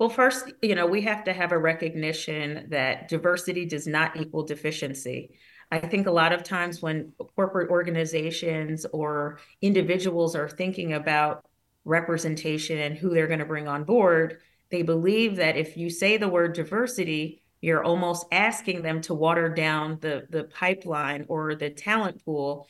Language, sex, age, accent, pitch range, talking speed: English, female, 30-49, American, 155-175 Hz, 165 wpm